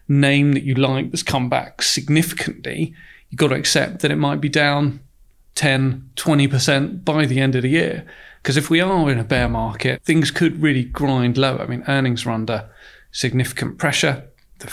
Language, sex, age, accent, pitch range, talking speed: English, male, 30-49, British, 120-145 Hz, 185 wpm